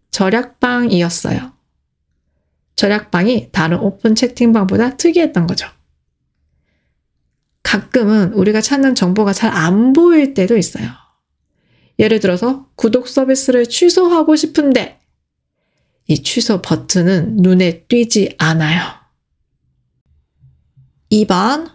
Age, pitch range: 30-49, 170-245 Hz